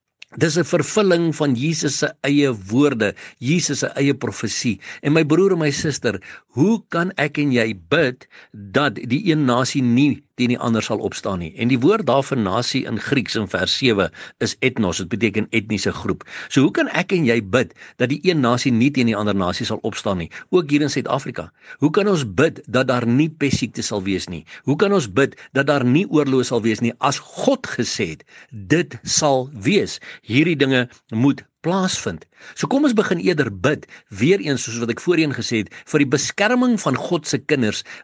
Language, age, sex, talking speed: English, 60-79, male, 200 wpm